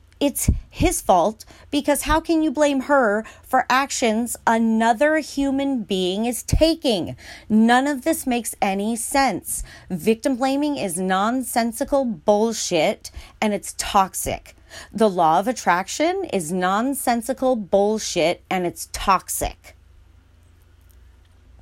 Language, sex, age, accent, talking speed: English, female, 40-59, American, 110 wpm